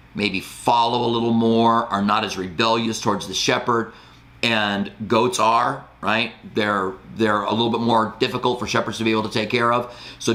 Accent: American